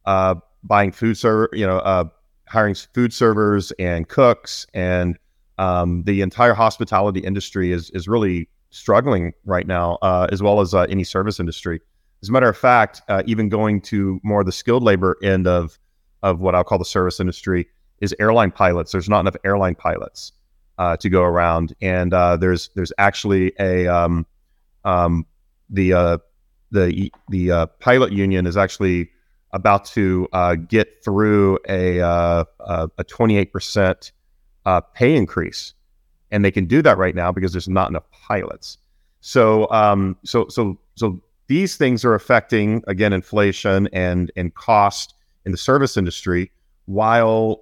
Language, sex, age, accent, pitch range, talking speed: English, male, 30-49, American, 90-105 Hz, 160 wpm